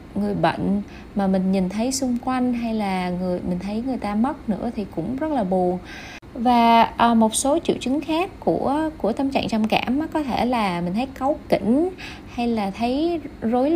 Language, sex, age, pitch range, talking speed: Vietnamese, female, 20-39, 195-270 Hz, 200 wpm